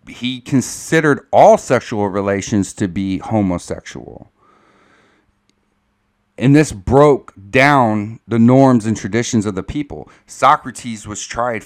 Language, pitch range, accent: English, 100-120 Hz, American